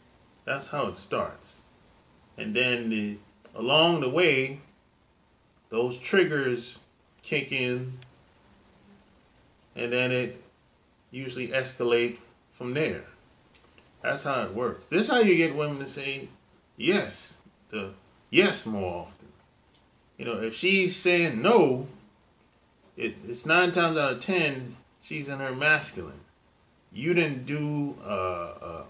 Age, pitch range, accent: 30-49, 115-160 Hz, American